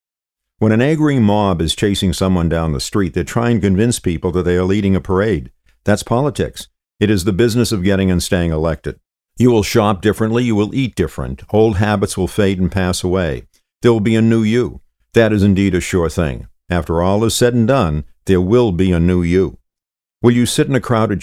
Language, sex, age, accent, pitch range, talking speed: English, male, 50-69, American, 90-110 Hz, 220 wpm